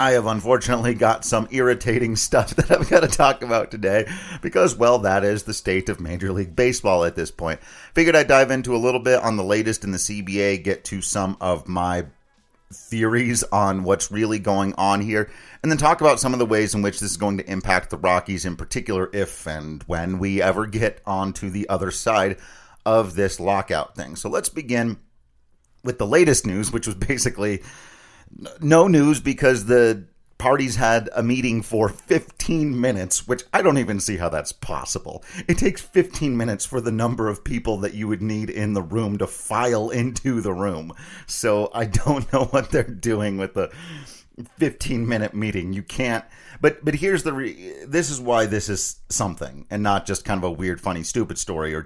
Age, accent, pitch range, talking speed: 30-49, American, 95-120 Hz, 200 wpm